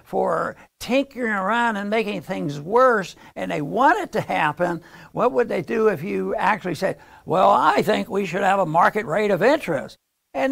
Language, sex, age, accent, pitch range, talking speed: English, male, 60-79, American, 180-225 Hz, 190 wpm